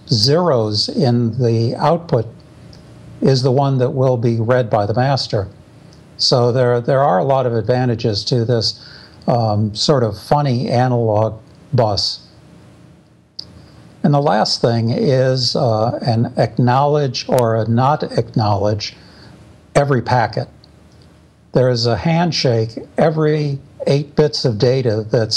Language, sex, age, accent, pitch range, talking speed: English, male, 60-79, American, 115-135 Hz, 130 wpm